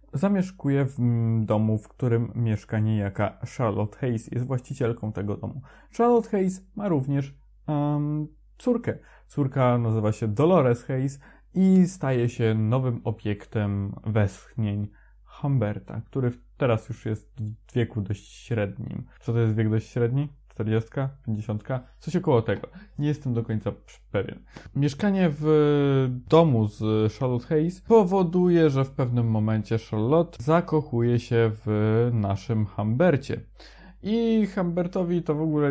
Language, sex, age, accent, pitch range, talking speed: Polish, male, 20-39, native, 110-150 Hz, 130 wpm